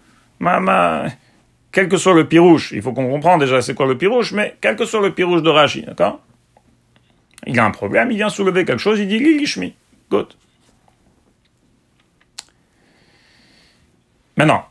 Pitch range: 120-190 Hz